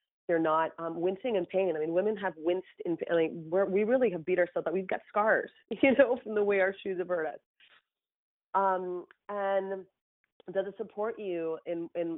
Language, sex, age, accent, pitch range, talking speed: English, female, 30-49, American, 165-190 Hz, 185 wpm